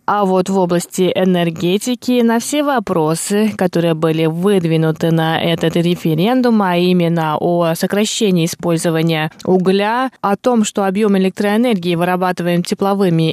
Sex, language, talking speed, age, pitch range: female, Russian, 120 wpm, 20-39, 170-220 Hz